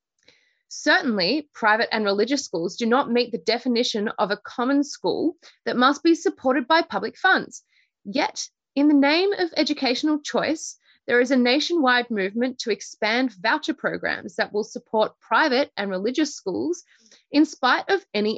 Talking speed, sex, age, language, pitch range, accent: 155 wpm, female, 20-39, English, 215-295 Hz, Australian